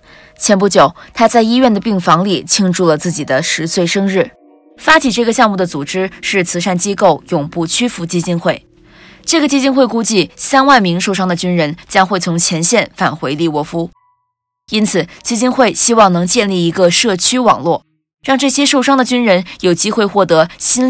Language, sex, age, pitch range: Chinese, female, 20-39, 175-235 Hz